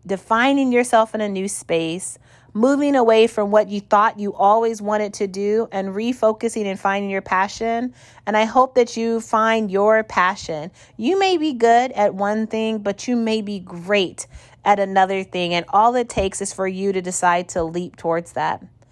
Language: English